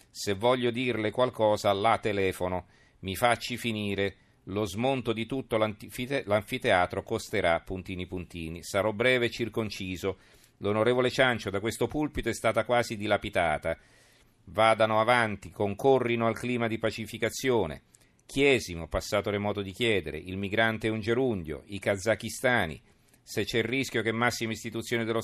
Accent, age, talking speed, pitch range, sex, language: native, 40-59, 135 wpm, 100-120 Hz, male, Italian